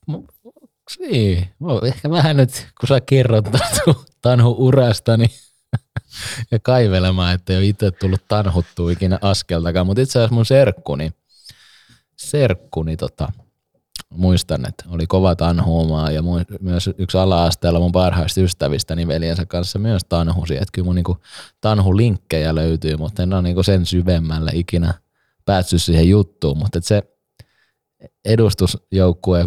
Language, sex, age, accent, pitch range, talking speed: Finnish, male, 20-39, native, 80-100 Hz, 130 wpm